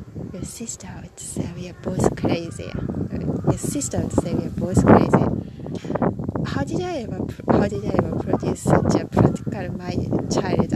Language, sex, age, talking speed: English, female, 20-39, 155 wpm